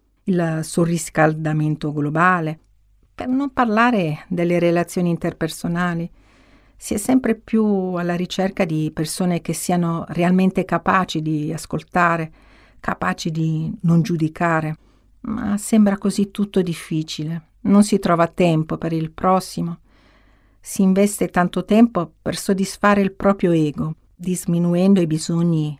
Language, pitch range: Italian, 155-185 Hz